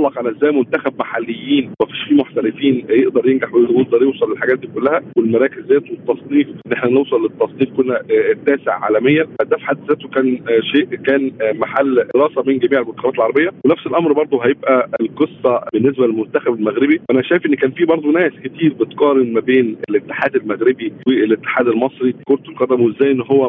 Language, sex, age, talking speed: Arabic, male, 50-69, 175 wpm